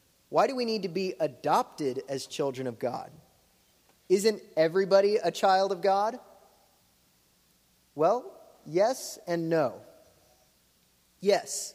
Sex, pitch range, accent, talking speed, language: male, 145-195 Hz, American, 110 wpm, English